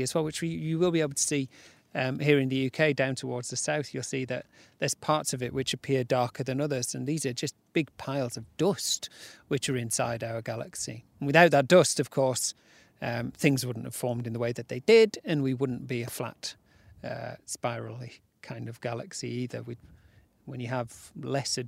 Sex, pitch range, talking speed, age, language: male, 125-150 Hz, 215 wpm, 40-59, English